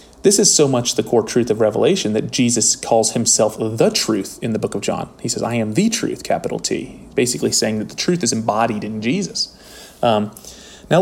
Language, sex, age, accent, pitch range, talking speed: English, male, 30-49, American, 110-130 Hz, 210 wpm